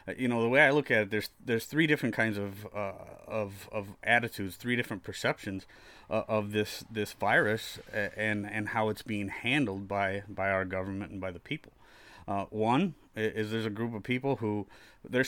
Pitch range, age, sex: 105-120 Hz, 30-49, male